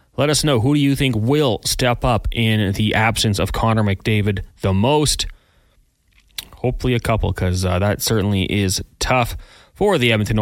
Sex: male